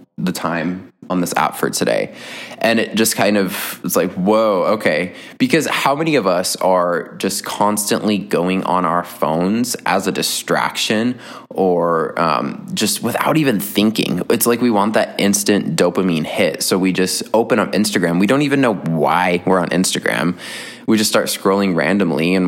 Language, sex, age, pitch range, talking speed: English, male, 20-39, 90-105 Hz, 175 wpm